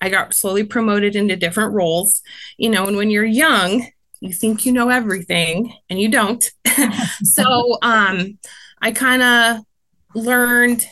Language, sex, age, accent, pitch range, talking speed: English, female, 20-39, American, 180-220 Hz, 150 wpm